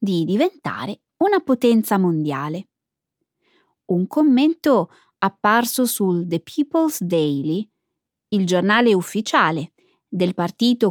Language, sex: Italian, female